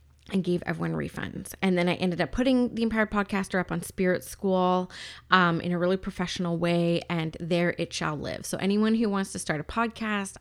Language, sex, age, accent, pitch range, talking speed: English, female, 20-39, American, 170-195 Hz, 210 wpm